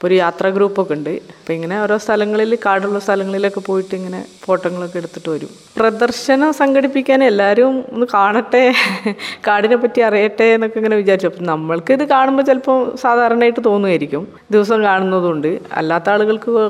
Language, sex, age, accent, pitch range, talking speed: Malayalam, female, 20-39, native, 180-230 Hz, 135 wpm